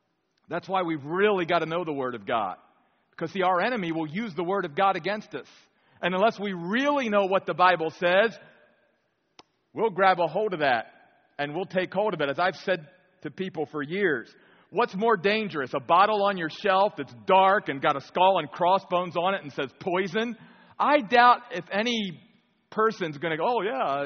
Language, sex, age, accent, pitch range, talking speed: English, male, 40-59, American, 175-230 Hz, 205 wpm